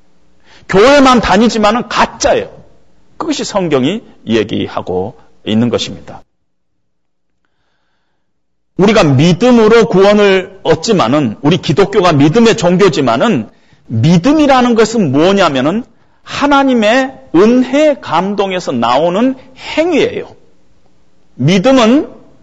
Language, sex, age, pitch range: Korean, male, 40-59, 160-260 Hz